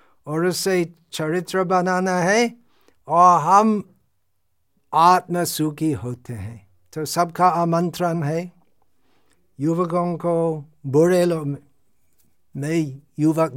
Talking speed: 90 wpm